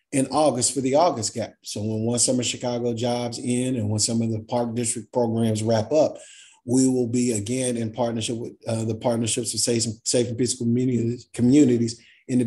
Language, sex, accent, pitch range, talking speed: English, male, American, 115-125 Hz, 200 wpm